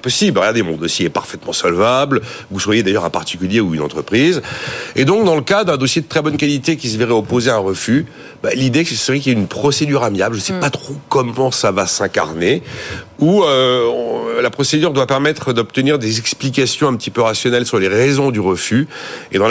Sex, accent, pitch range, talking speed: male, French, 100-130 Hz, 225 wpm